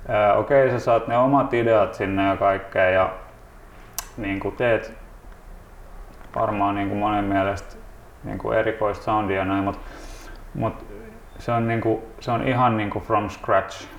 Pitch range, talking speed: 100-120 Hz, 150 wpm